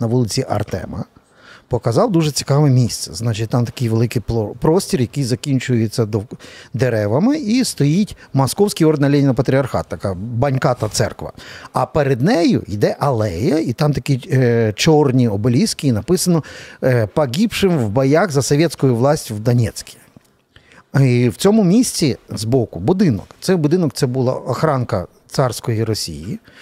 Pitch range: 125-165 Hz